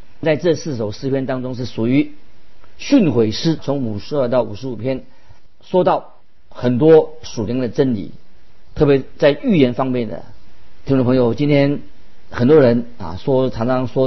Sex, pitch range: male, 120-160 Hz